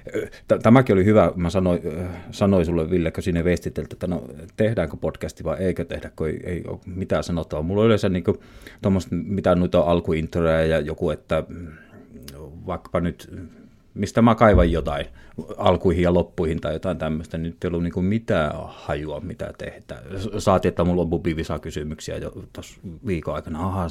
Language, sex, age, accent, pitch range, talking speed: Finnish, male, 30-49, native, 80-100 Hz, 155 wpm